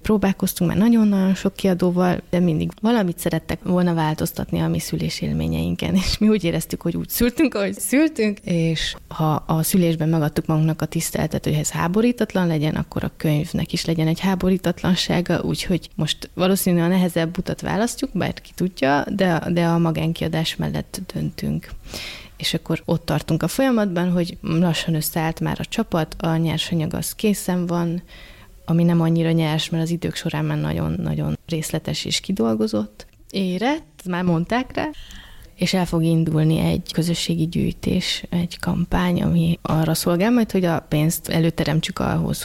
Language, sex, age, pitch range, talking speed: Hungarian, female, 30-49, 160-190 Hz, 155 wpm